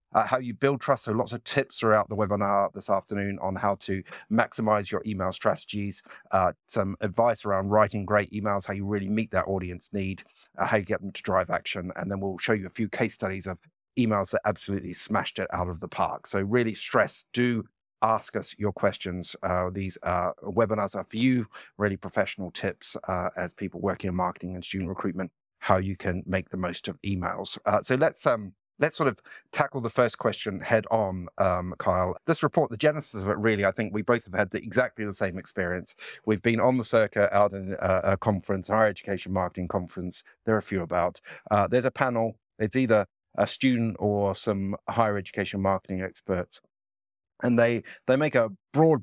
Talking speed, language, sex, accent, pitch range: 210 wpm, English, male, British, 95-110 Hz